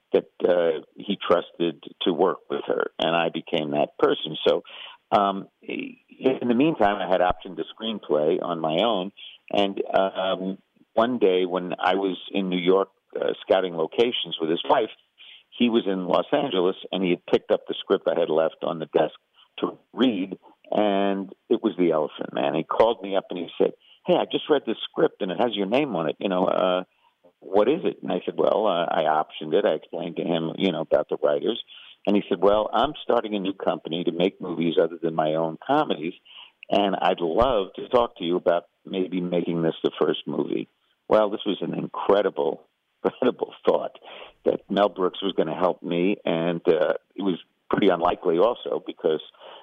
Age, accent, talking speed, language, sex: 50-69, American, 200 wpm, English, male